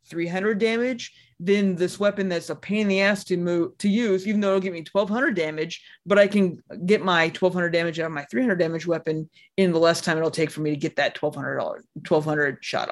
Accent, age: American, 30-49